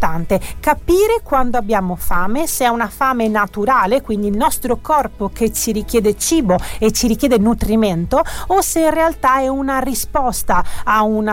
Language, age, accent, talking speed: Italian, 40-59, native, 160 wpm